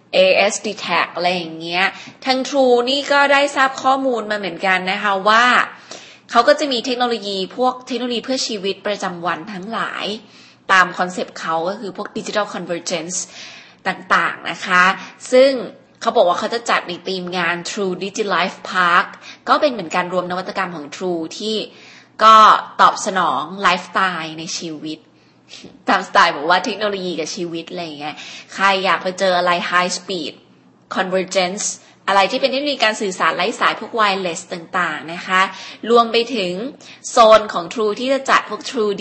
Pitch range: 180-230 Hz